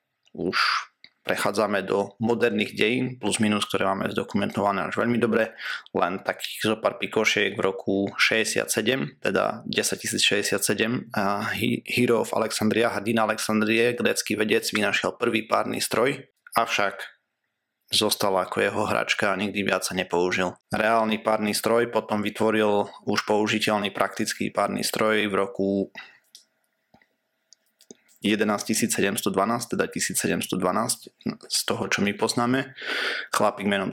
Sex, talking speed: male, 120 wpm